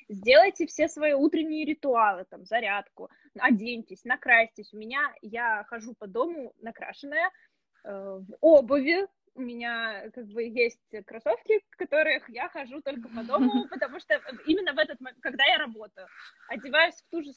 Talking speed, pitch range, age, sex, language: 155 wpm, 225-310 Hz, 20-39, female, Russian